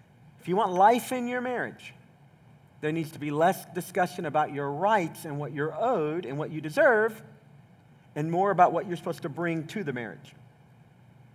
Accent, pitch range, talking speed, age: American, 140-180 Hz, 185 wpm, 40-59